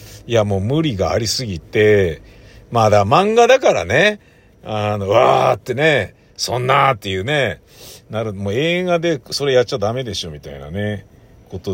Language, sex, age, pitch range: Japanese, male, 50-69, 105-145 Hz